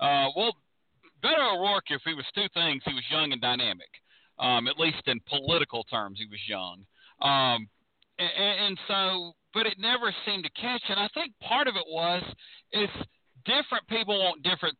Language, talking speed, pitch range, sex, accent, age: English, 185 wpm, 155-205 Hz, male, American, 40-59